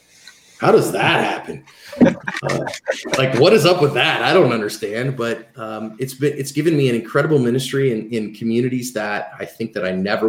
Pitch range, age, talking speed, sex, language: 115-135 Hz, 30-49, 185 wpm, male, English